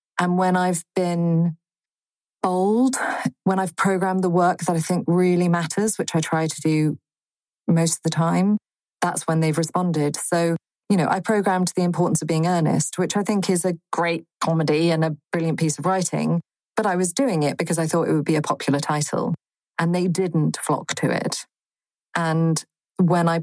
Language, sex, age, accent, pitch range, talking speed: English, female, 30-49, British, 160-185 Hz, 190 wpm